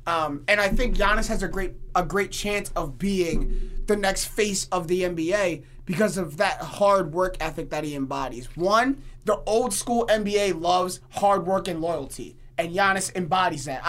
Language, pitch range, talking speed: English, 160-205 Hz, 180 wpm